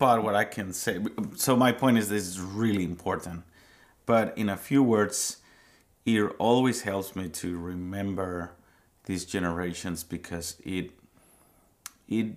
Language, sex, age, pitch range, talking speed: English, male, 30-49, 90-110 Hz, 135 wpm